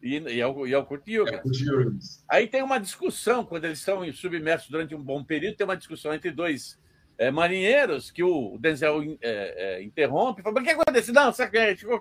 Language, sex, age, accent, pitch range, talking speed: Portuguese, male, 60-79, Brazilian, 185-260 Hz, 195 wpm